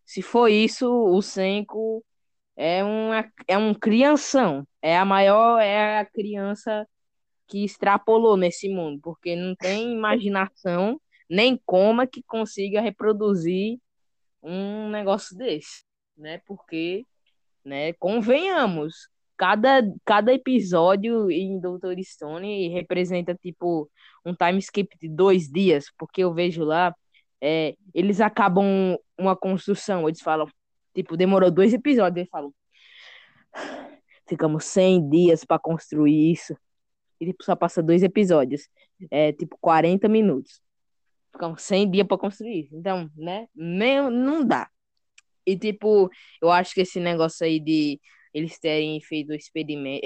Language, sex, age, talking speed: Portuguese, female, 20-39, 130 wpm